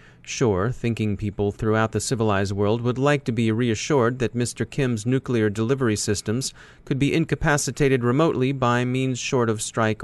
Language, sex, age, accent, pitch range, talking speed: English, male, 30-49, American, 110-135 Hz, 160 wpm